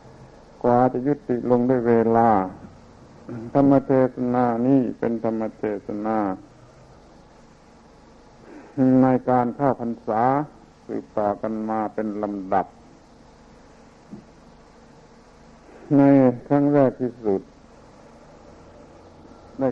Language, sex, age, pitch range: Thai, male, 60-79, 110-130 Hz